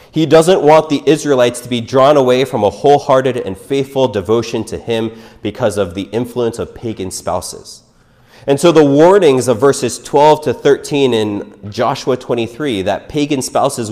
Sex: male